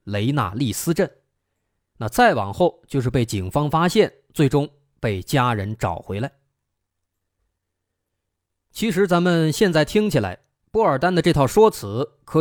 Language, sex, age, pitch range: Chinese, male, 20-39, 105-165 Hz